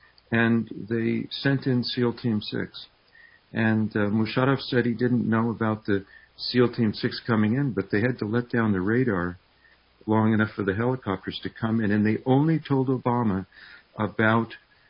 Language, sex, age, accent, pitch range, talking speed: English, male, 60-79, American, 100-125 Hz, 175 wpm